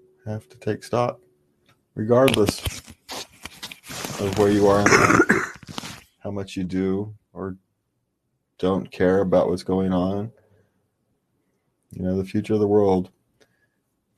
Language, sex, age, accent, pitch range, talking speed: English, male, 30-49, American, 90-110 Hz, 115 wpm